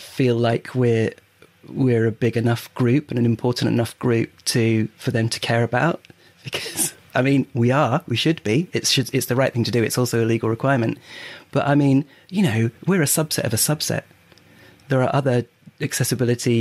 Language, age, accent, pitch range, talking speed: English, 30-49, British, 115-135 Hz, 200 wpm